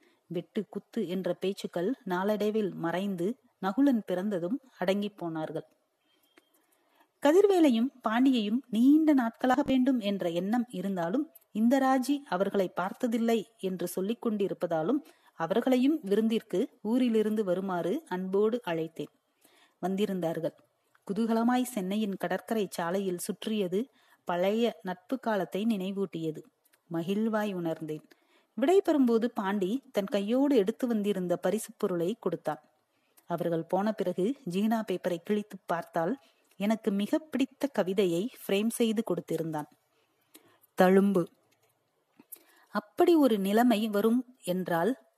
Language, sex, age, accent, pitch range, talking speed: Tamil, female, 30-49, native, 180-245 Hz, 95 wpm